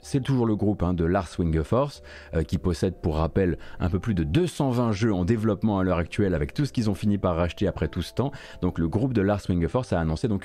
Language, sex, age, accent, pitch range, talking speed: French, male, 30-49, French, 90-120 Hz, 260 wpm